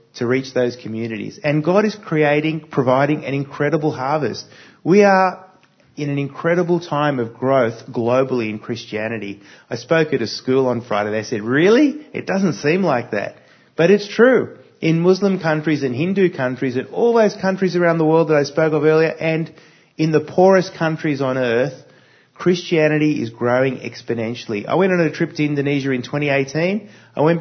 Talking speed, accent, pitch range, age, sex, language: 175 wpm, Australian, 115-160 Hz, 30-49, male, English